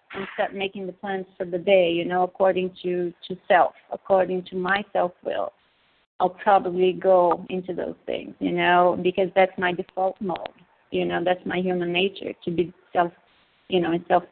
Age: 30-49